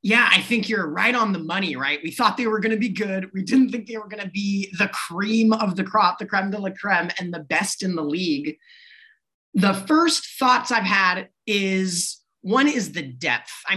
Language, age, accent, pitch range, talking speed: English, 30-49, American, 170-220 Hz, 225 wpm